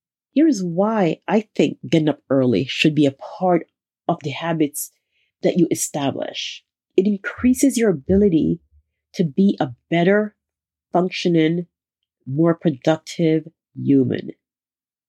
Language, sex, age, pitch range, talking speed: English, female, 40-59, 160-205 Hz, 120 wpm